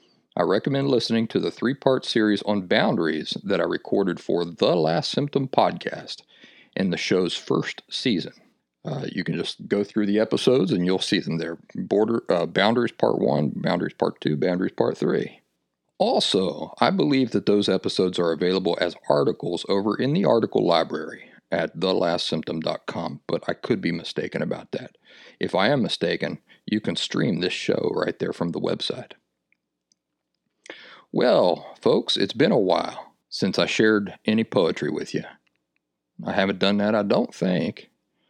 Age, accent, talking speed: 40-59, American, 160 wpm